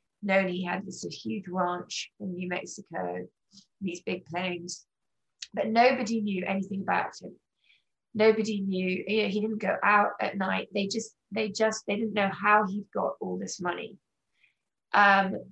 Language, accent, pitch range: English, British, 180-210 Hz